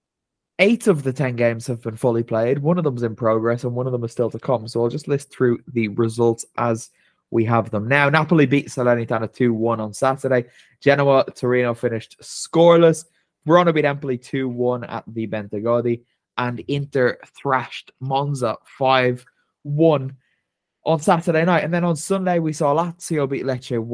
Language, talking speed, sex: English, 175 wpm, male